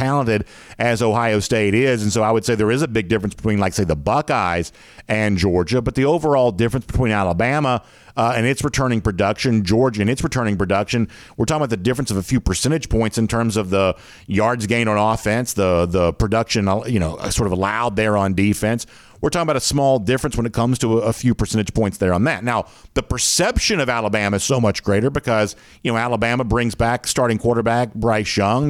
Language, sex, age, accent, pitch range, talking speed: English, male, 50-69, American, 100-125 Hz, 215 wpm